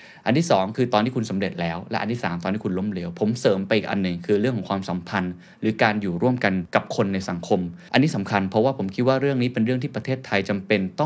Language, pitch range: Thai, 100-130 Hz